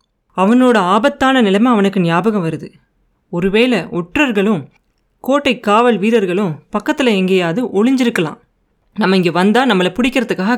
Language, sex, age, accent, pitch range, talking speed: Tamil, female, 30-49, native, 175-225 Hz, 110 wpm